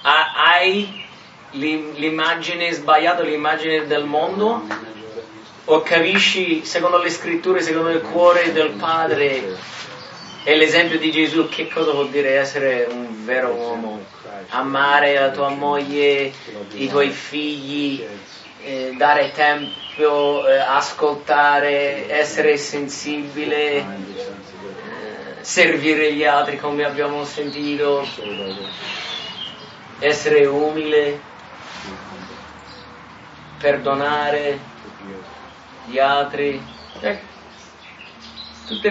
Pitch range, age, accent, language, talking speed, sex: 135-160 Hz, 30-49, Italian, English, 85 wpm, male